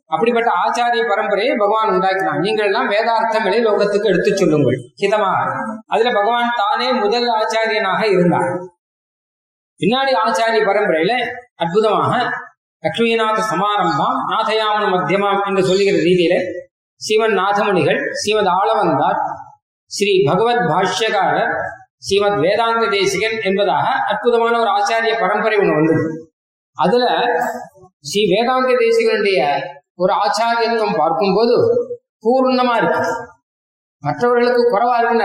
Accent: native